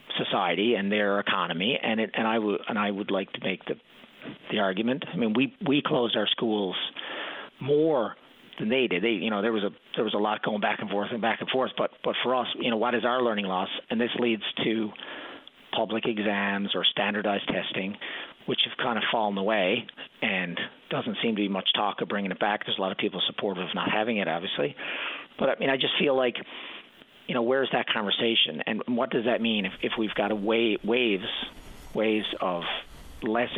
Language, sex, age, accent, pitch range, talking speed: English, male, 40-59, American, 95-115 Hz, 205 wpm